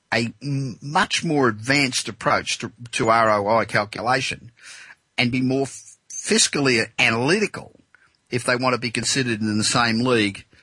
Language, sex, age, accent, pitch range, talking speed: English, male, 50-69, Australian, 105-130 Hz, 135 wpm